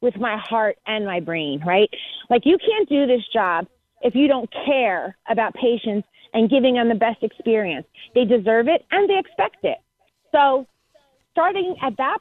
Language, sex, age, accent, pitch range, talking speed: English, female, 30-49, American, 230-310 Hz, 175 wpm